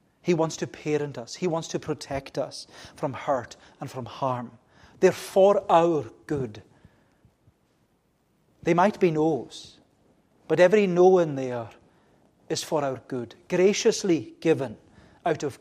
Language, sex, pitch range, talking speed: English, male, 140-180 Hz, 140 wpm